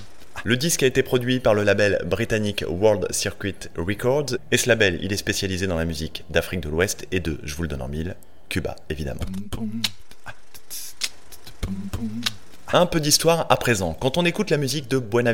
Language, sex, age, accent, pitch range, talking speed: French, male, 30-49, French, 90-120 Hz, 180 wpm